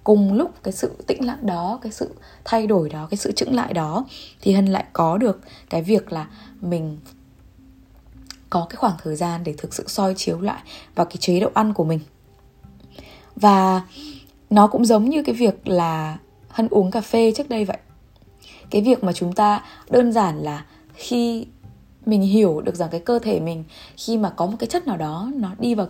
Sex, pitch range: female, 160-220 Hz